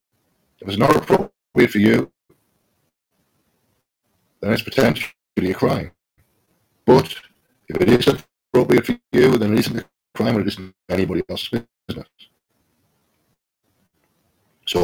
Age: 50-69